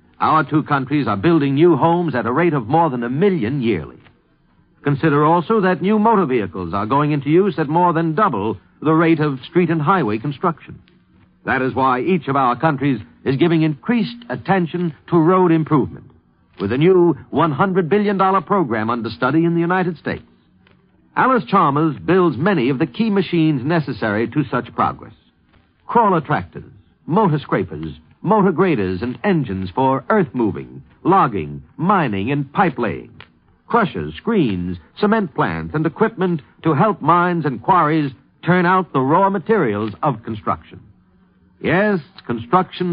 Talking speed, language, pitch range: 150 wpm, English, 120-175 Hz